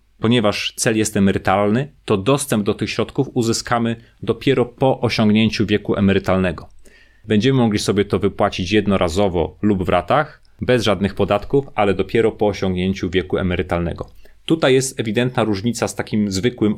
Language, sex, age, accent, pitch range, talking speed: Polish, male, 30-49, native, 100-115 Hz, 145 wpm